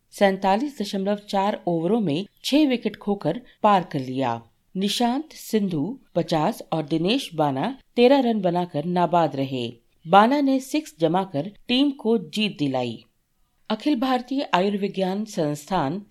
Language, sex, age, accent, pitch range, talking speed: Hindi, female, 50-69, native, 155-220 Hz, 125 wpm